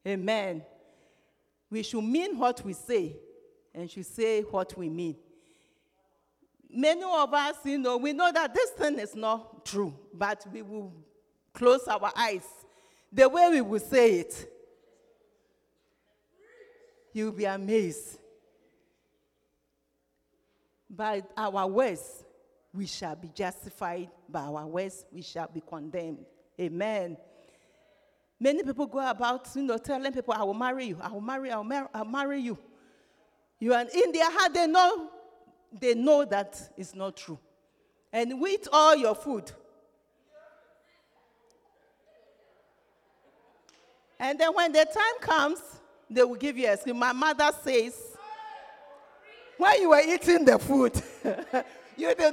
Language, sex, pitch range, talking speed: English, female, 205-310 Hz, 140 wpm